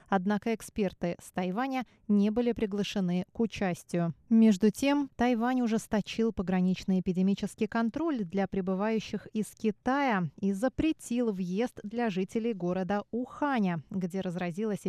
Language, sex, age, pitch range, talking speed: Russian, female, 20-39, 190-240 Hz, 115 wpm